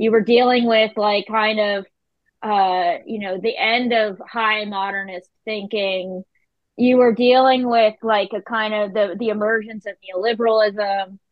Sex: female